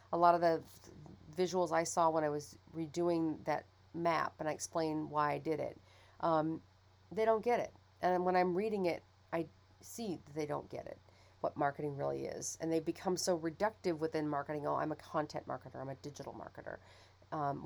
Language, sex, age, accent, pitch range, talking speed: English, female, 40-59, American, 145-180 Hz, 195 wpm